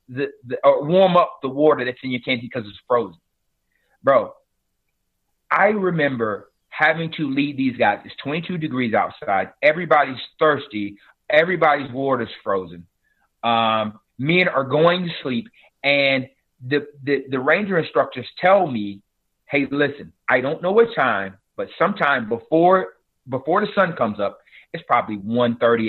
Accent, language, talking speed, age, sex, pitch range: American, English, 145 wpm, 30-49, male, 125-175 Hz